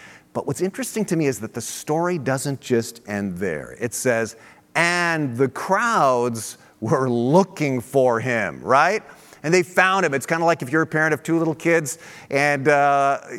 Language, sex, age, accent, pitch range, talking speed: English, male, 40-59, American, 125-175 Hz, 185 wpm